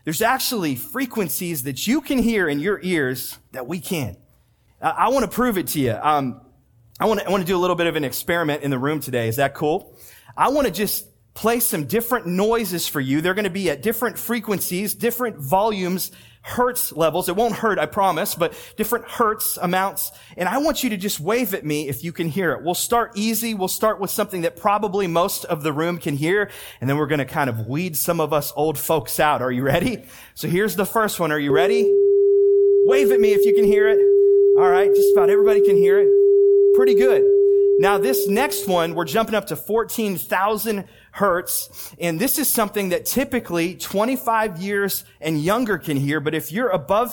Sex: male